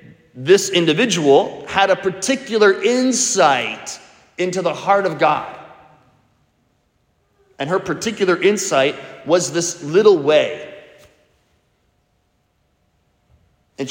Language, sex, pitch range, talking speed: English, male, 140-200 Hz, 85 wpm